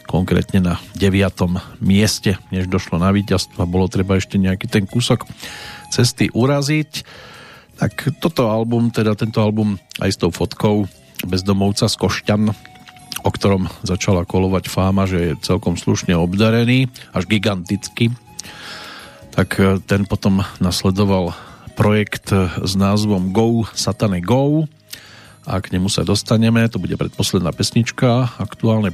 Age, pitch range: 40-59, 95-115 Hz